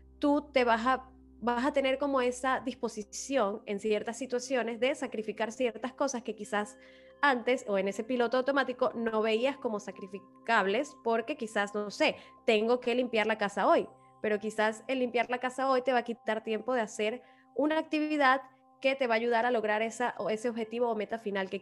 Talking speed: 195 wpm